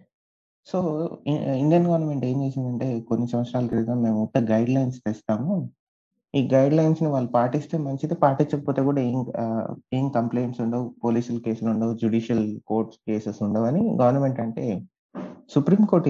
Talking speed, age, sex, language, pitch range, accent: 135 wpm, 30-49, male, Telugu, 115-155 Hz, native